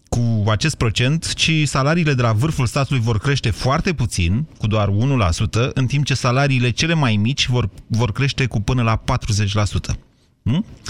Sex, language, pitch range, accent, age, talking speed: male, Romanian, 105-135 Hz, native, 30-49, 170 wpm